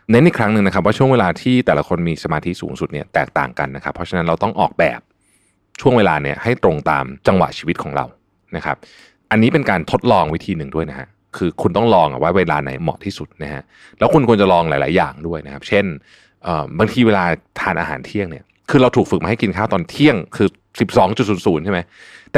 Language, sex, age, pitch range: Thai, male, 20-39, 85-105 Hz